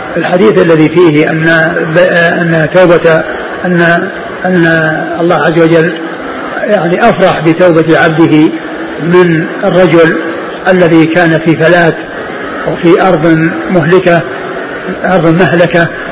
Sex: male